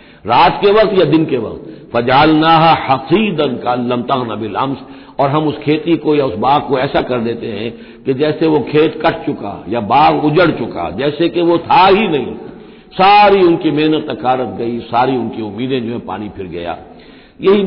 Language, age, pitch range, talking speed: Hindi, 60-79, 120-175 Hz, 190 wpm